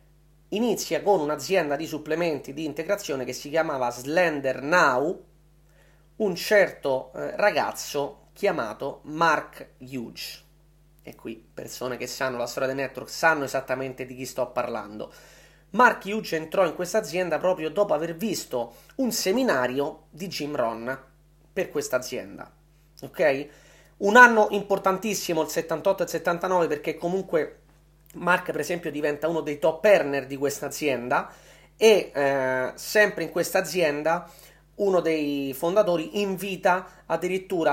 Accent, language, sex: native, Italian, male